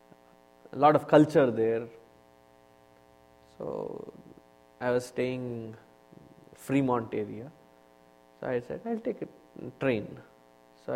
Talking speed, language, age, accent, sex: 105 wpm, English, 20-39, Indian, male